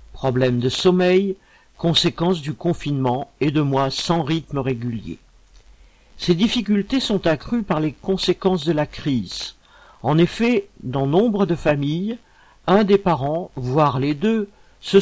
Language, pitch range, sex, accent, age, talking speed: French, 135-190 Hz, male, French, 50-69, 140 wpm